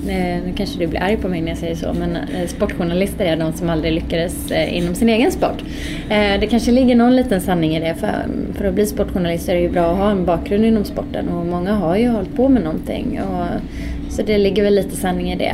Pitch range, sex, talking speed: 170-230 Hz, female, 235 wpm